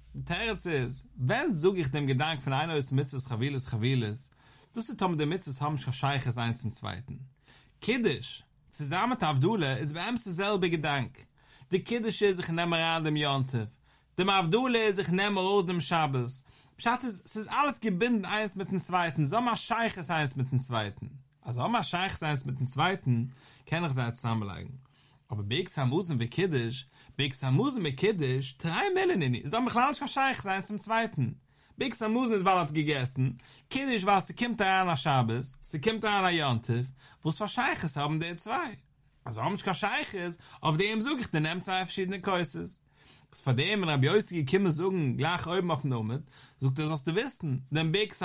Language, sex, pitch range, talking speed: English, male, 130-190 Hz, 155 wpm